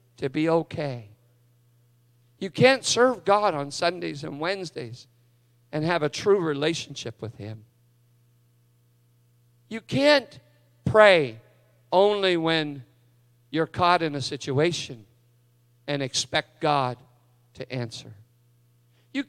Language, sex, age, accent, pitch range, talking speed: English, male, 50-69, American, 105-180 Hz, 105 wpm